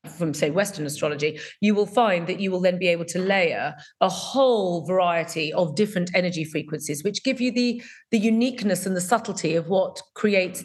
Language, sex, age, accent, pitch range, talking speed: English, female, 40-59, British, 170-215 Hz, 190 wpm